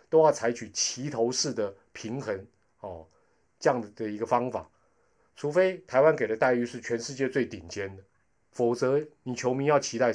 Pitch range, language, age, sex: 105-150 Hz, Chinese, 30-49, male